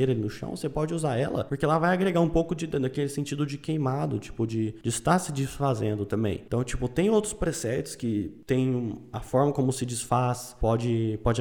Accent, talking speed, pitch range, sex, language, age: Brazilian, 205 wpm, 120-150 Hz, male, Portuguese, 20-39